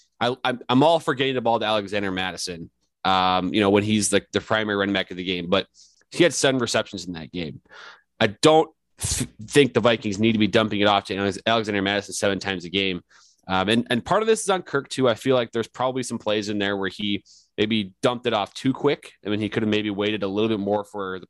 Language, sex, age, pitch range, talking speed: English, male, 20-39, 95-115 Hz, 250 wpm